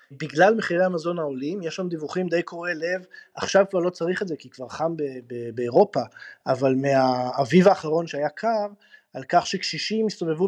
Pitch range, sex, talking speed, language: 150-200 Hz, male, 180 wpm, Hebrew